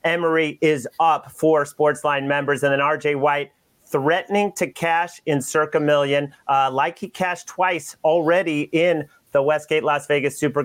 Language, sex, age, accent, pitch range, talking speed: English, male, 30-49, American, 145-165 Hz, 160 wpm